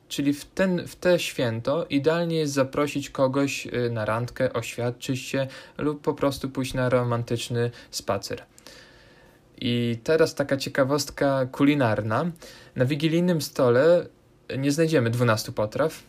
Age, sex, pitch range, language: 20-39, male, 120-140 Hz, Polish